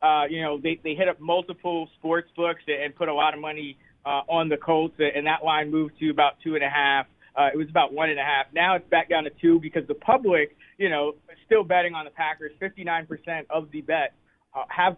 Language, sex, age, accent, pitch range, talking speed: English, male, 20-39, American, 155-180 Hz, 235 wpm